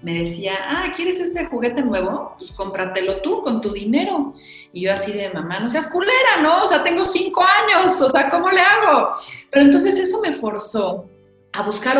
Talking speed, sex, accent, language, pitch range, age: 195 wpm, female, Mexican, Spanish, 180-265 Hz, 30-49